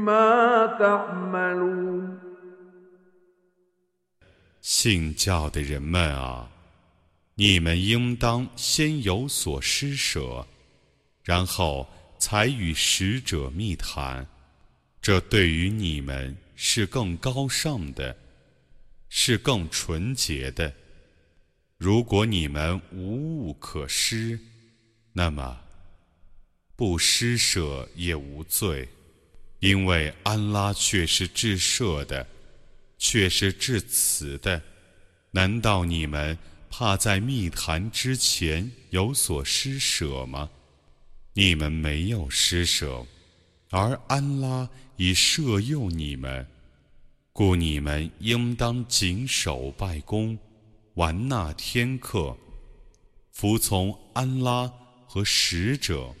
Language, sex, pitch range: Arabic, male, 80-120 Hz